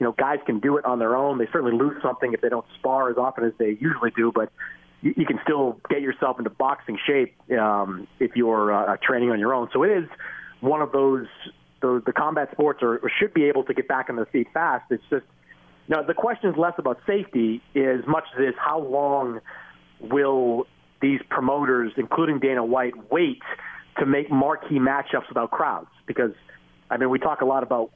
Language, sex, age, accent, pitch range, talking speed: English, male, 40-59, American, 130-170 Hz, 220 wpm